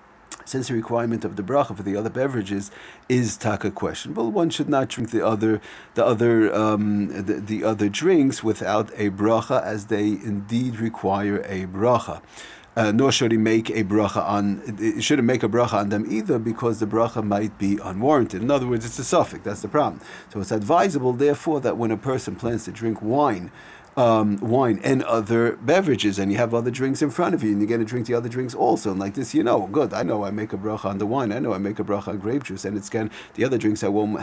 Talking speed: 230 wpm